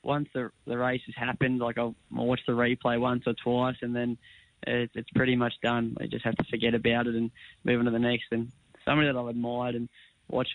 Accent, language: Australian, English